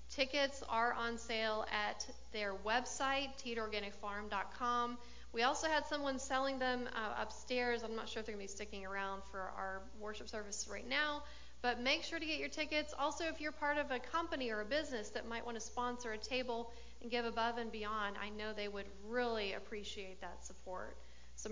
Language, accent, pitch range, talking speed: English, American, 215-260 Hz, 195 wpm